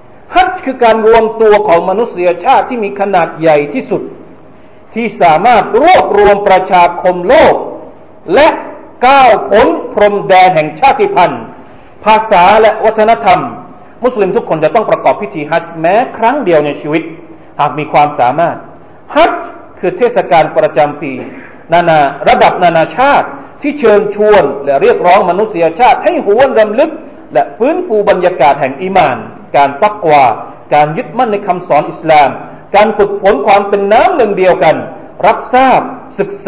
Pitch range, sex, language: 160-240 Hz, male, Thai